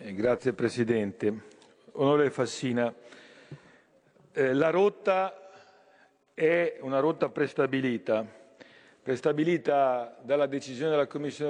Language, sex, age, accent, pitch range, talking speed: Italian, male, 50-69, native, 125-160 Hz, 85 wpm